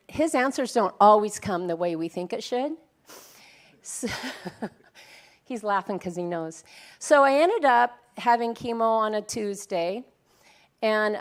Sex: female